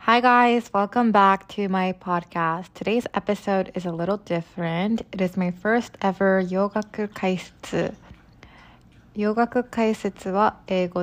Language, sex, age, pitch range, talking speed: English, female, 20-39, 180-215 Hz, 130 wpm